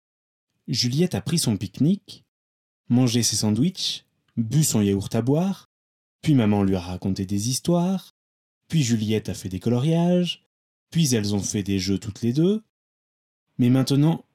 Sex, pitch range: male, 100-140 Hz